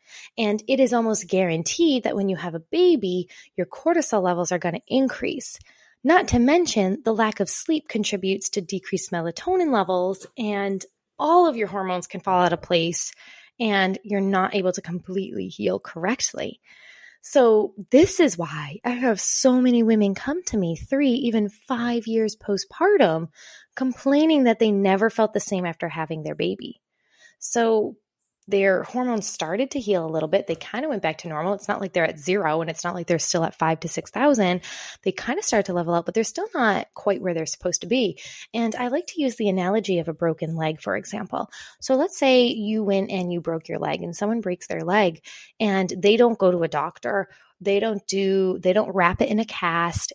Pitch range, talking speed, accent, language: 180-235 Hz, 205 wpm, American, English